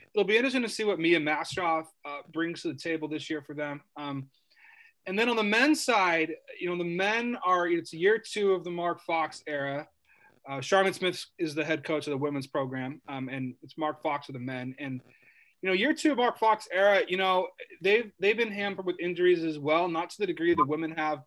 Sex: male